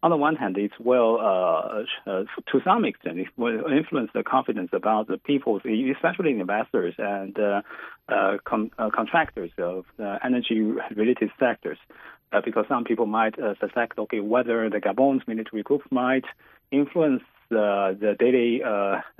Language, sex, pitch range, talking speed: English, male, 110-130 Hz, 155 wpm